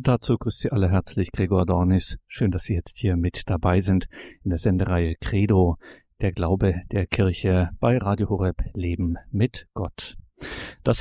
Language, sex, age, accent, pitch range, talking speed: German, male, 50-69, German, 95-120 Hz, 165 wpm